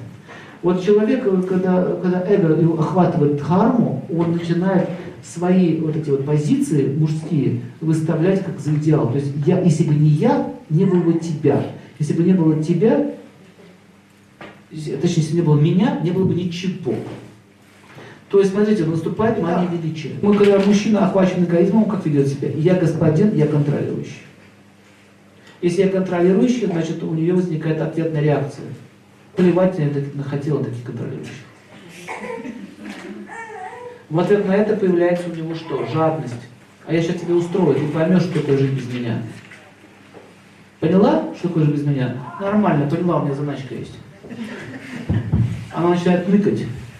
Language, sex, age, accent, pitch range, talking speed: Russian, male, 50-69, native, 145-185 Hz, 145 wpm